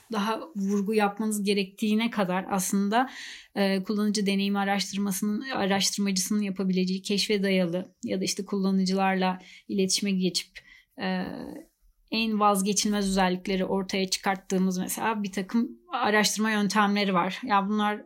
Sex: female